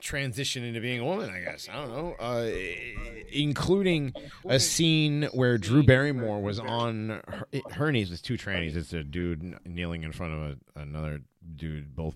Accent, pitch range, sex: American, 95-145 Hz, male